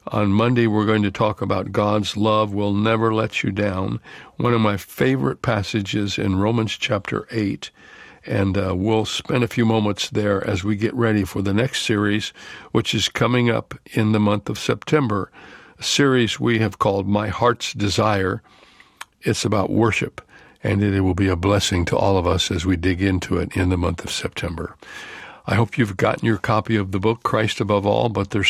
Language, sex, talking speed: English, male, 195 wpm